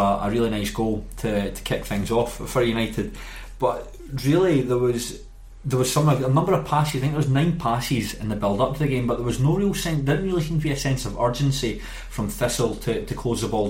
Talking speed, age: 250 wpm, 20-39